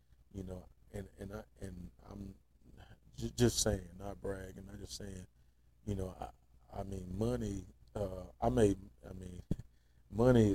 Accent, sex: American, male